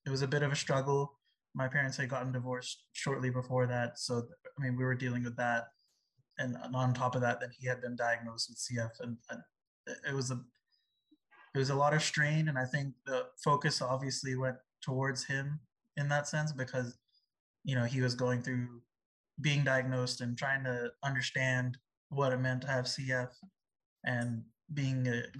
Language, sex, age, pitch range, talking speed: English, male, 20-39, 125-140 Hz, 190 wpm